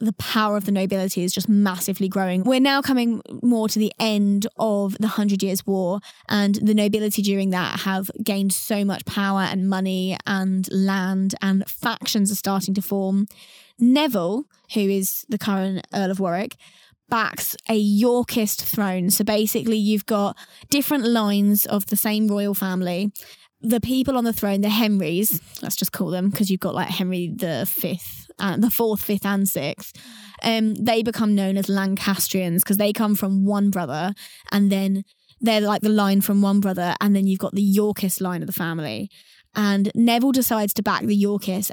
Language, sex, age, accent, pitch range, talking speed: English, female, 10-29, British, 195-220 Hz, 180 wpm